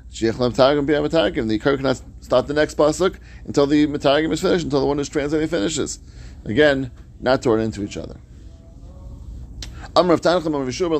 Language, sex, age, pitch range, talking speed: English, male, 30-49, 95-155 Hz, 160 wpm